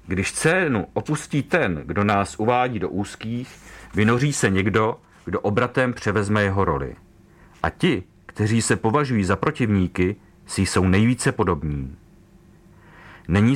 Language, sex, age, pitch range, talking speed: Czech, male, 40-59, 100-125 Hz, 130 wpm